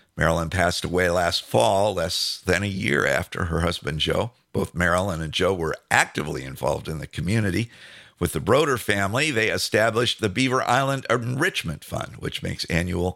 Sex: male